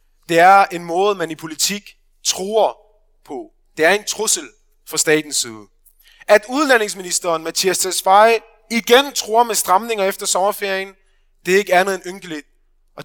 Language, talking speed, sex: Danish, 150 wpm, male